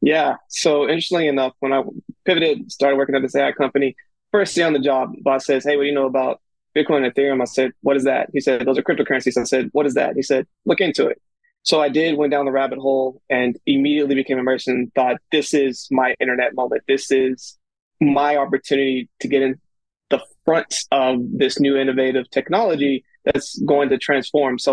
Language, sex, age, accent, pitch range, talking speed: English, male, 20-39, American, 130-150 Hz, 210 wpm